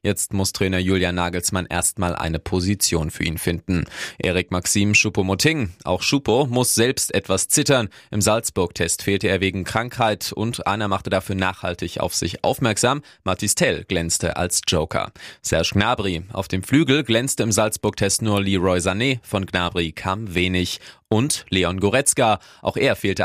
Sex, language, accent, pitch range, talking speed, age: male, German, German, 95-115 Hz, 155 wpm, 20-39